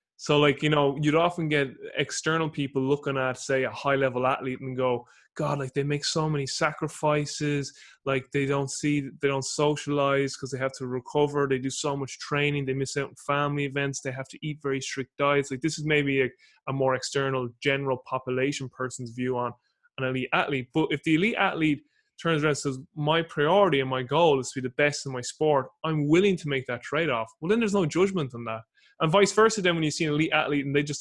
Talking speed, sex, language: 230 wpm, male, English